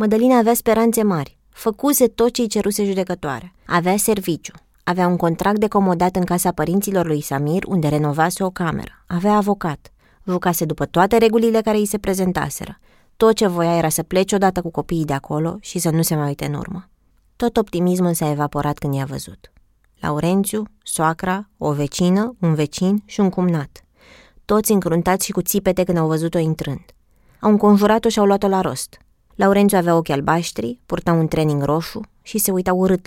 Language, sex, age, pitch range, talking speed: Romanian, female, 20-39, 150-195 Hz, 180 wpm